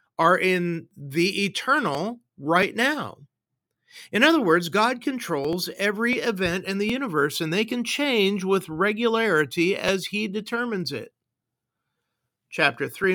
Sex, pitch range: male, 150-210 Hz